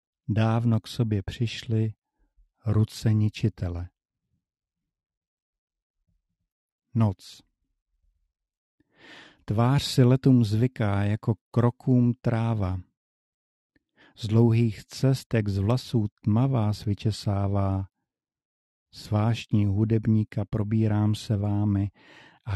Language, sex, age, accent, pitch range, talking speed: Czech, male, 50-69, native, 100-120 Hz, 70 wpm